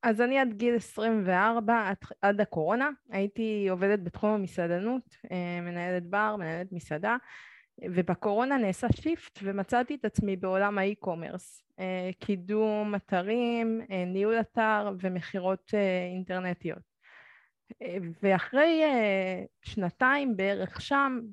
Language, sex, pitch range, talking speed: Hebrew, female, 185-240 Hz, 95 wpm